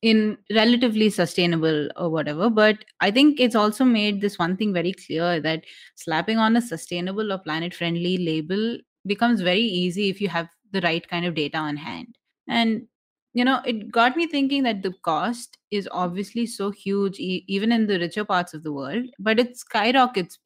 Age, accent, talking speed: 30-49, Indian, 180 wpm